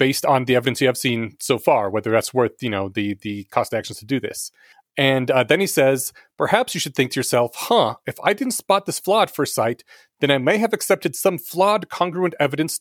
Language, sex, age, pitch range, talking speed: English, male, 30-49, 125-170 Hz, 240 wpm